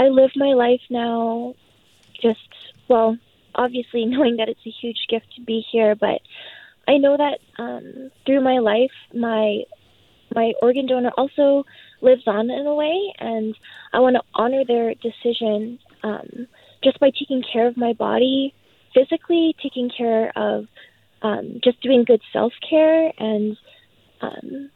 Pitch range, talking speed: 230-275 Hz, 150 wpm